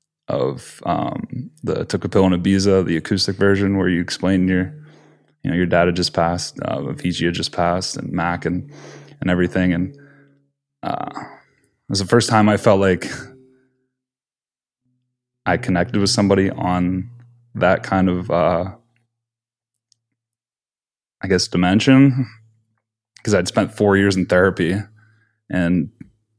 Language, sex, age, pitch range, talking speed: English, male, 10-29, 90-110 Hz, 140 wpm